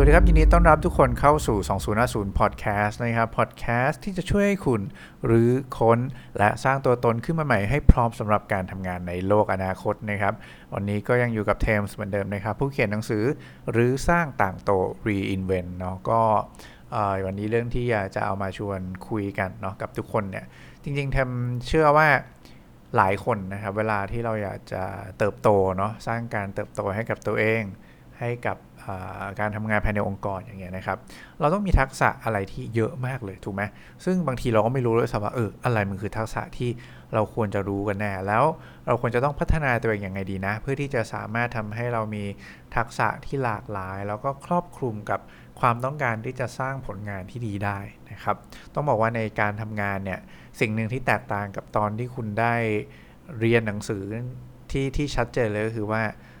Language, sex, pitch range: English, male, 100-125 Hz